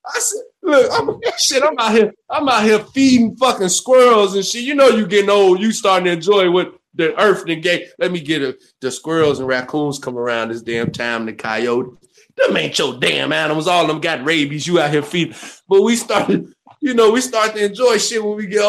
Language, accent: English, American